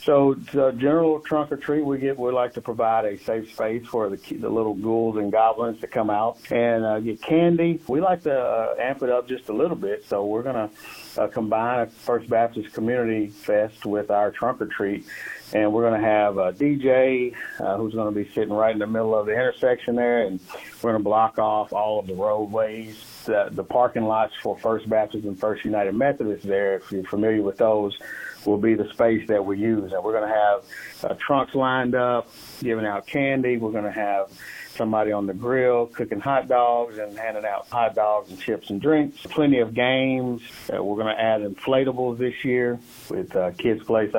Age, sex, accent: 50-69, male, American